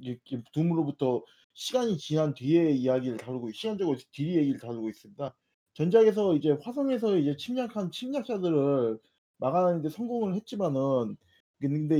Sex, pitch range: male, 130-195 Hz